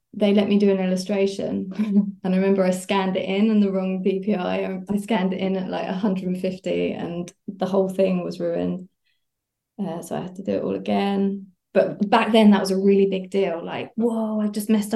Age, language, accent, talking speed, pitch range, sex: 20-39, English, British, 215 wpm, 185-215 Hz, female